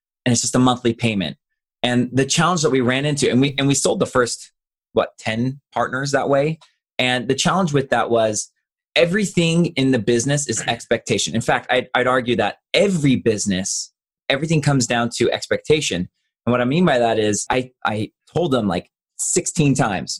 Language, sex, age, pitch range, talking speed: English, male, 20-39, 115-145 Hz, 190 wpm